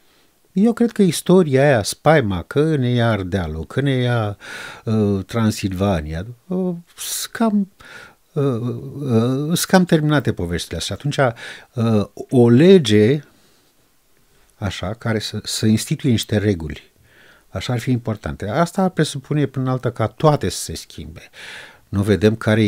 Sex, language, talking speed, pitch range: male, Romanian, 140 wpm, 100-130 Hz